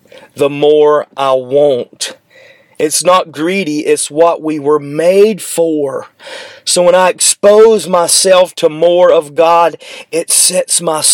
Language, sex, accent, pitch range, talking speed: English, male, American, 160-200 Hz, 135 wpm